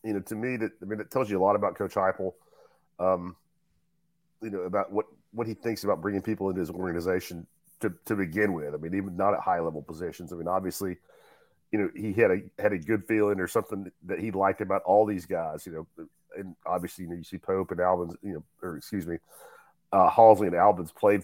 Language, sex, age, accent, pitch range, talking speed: English, male, 40-59, American, 90-105 Hz, 235 wpm